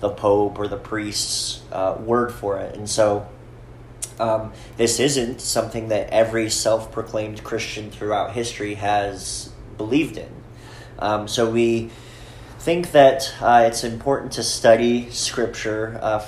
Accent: American